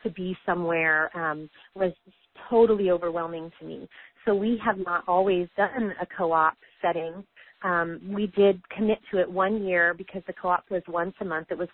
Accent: American